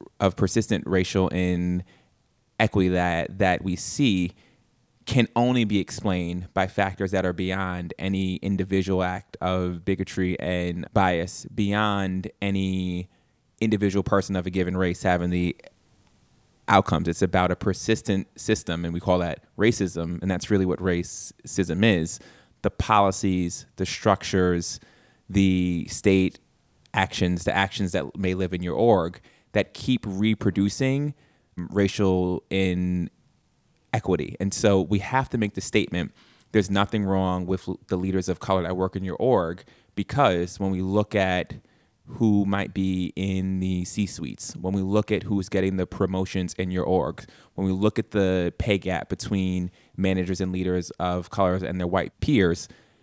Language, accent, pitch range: English, American, 90-100 Hz